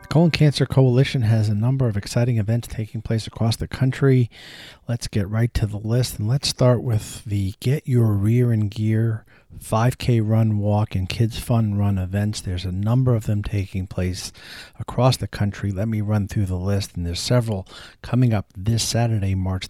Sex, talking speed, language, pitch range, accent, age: male, 190 wpm, English, 100-120 Hz, American, 40-59